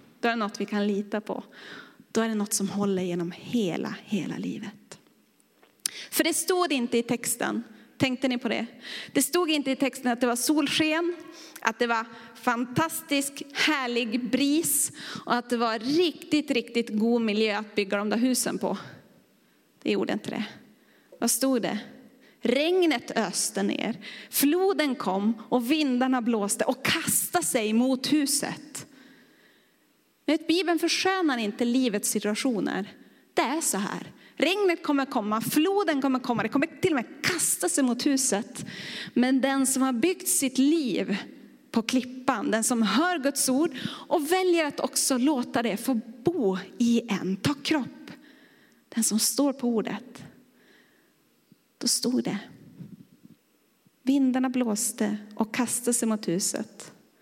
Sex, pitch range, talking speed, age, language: female, 225-290 Hz, 150 wpm, 30-49, Swedish